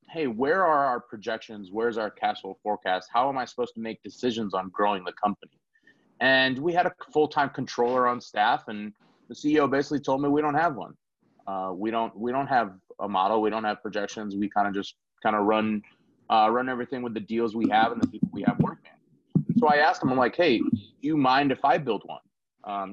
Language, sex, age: English, male, 30-49